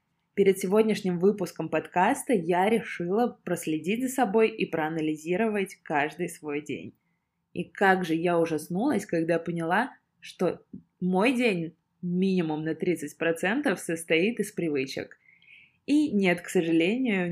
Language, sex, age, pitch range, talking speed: Russian, female, 20-39, 165-220 Hz, 120 wpm